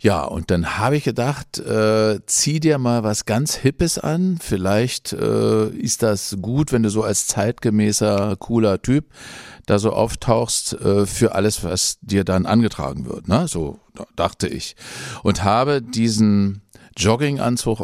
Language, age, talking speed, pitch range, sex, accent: German, 50-69, 150 wpm, 90-115 Hz, male, German